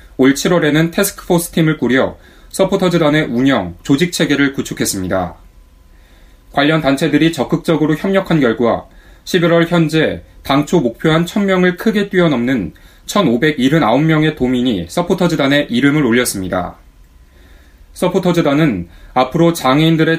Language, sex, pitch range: Korean, male, 110-165 Hz